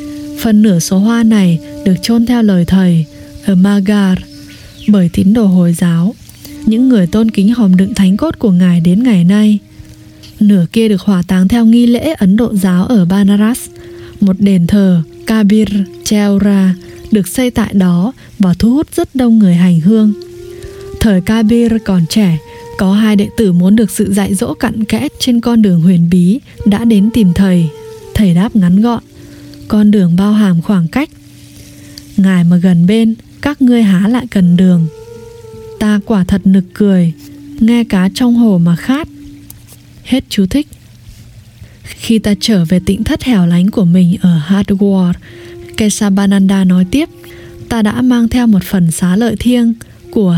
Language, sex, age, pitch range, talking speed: English, female, 20-39, 180-225 Hz, 200 wpm